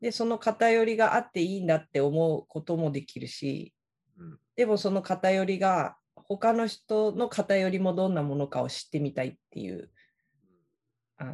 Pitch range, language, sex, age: 150-205 Hz, Japanese, female, 40-59